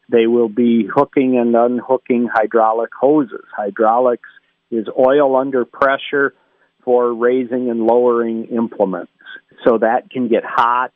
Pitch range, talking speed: 110-125 Hz, 125 wpm